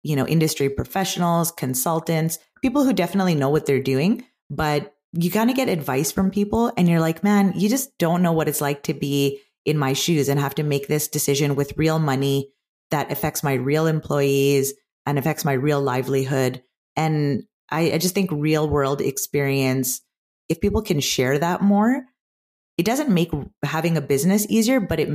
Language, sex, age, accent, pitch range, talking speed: English, female, 30-49, American, 140-170 Hz, 185 wpm